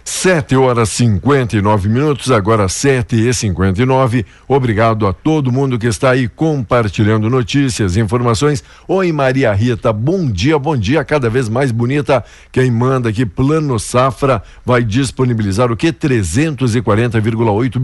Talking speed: 145 wpm